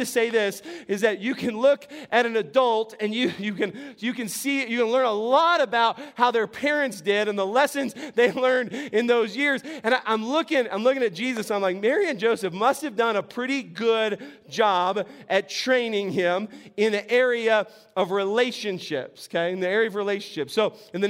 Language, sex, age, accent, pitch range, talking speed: English, male, 30-49, American, 205-255 Hz, 210 wpm